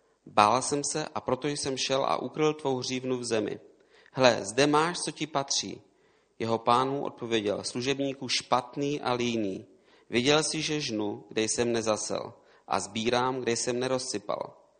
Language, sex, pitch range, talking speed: Czech, male, 105-135 Hz, 155 wpm